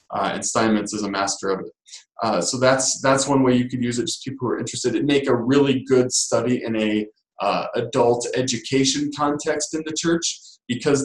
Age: 20-39